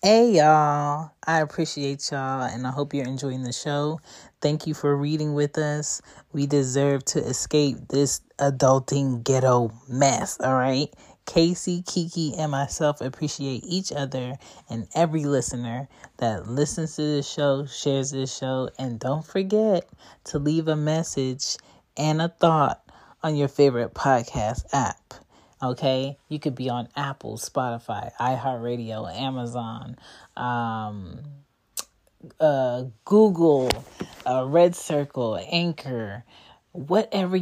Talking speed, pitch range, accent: 125 wpm, 130-155 Hz, American